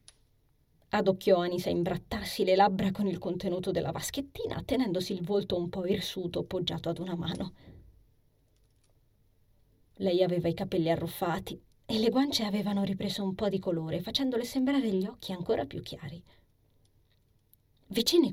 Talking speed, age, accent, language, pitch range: 140 wpm, 30-49, native, Italian, 125-205 Hz